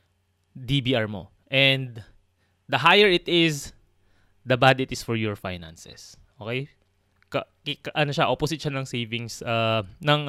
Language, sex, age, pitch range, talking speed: Filipino, male, 20-39, 110-140 Hz, 145 wpm